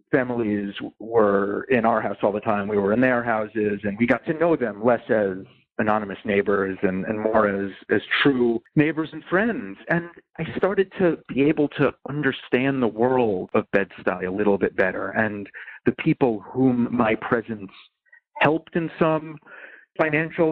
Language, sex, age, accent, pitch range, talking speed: English, male, 40-59, American, 105-145 Hz, 170 wpm